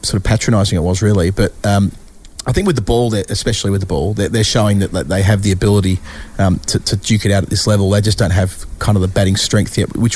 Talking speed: 265 wpm